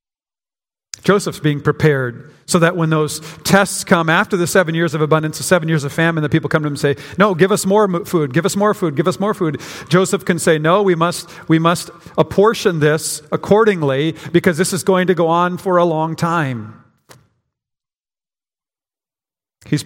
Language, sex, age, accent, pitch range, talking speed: English, male, 50-69, American, 150-175 Hz, 190 wpm